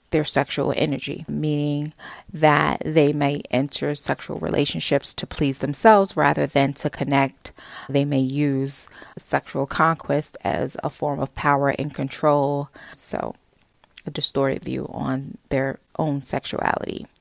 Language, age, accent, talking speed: English, 30-49, American, 130 wpm